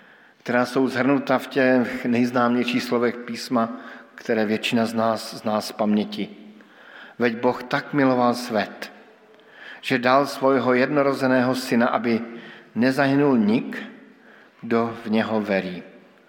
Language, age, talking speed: Slovak, 50-69, 120 wpm